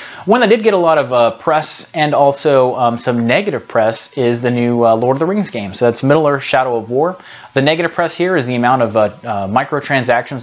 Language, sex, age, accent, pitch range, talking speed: English, male, 30-49, American, 115-145 Hz, 240 wpm